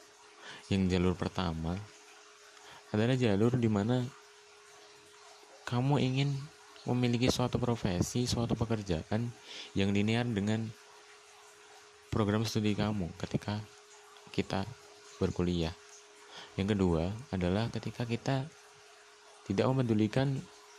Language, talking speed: Indonesian, 85 wpm